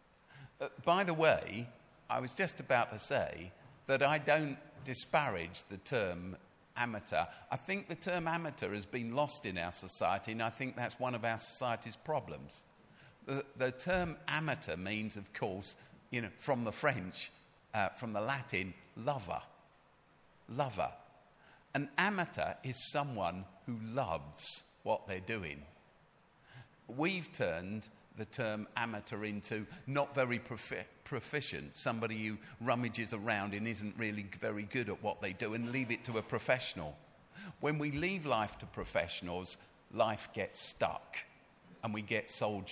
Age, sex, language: 50-69, male, English